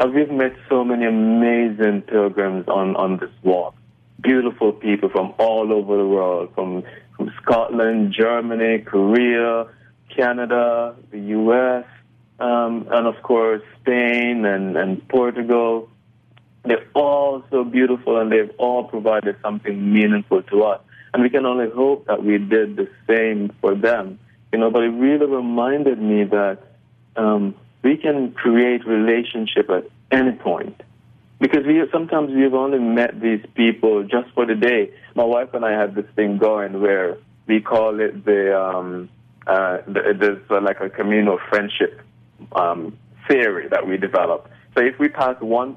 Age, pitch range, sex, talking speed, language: 20-39, 105-120 Hz, male, 155 wpm, English